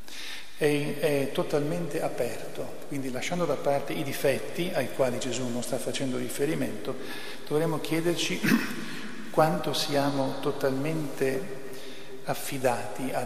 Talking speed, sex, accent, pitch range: 105 wpm, male, native, 125-145 Hz